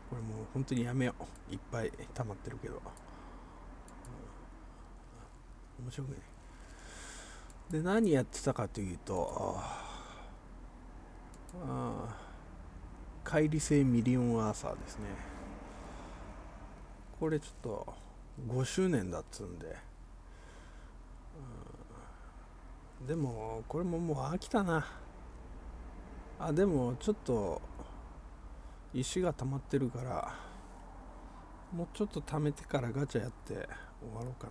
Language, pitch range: Japanese, 95-150 Hz